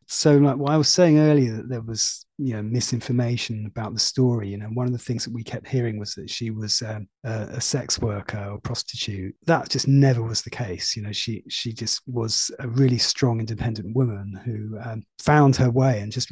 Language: English